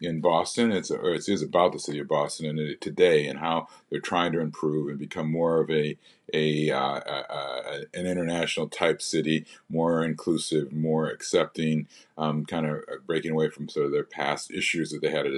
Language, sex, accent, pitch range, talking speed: English, male, American, 75-90 Hz, 200 wpm